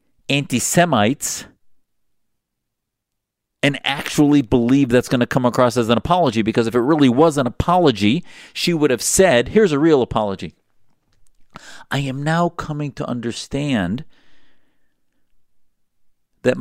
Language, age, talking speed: English, 50-69, 125 wpm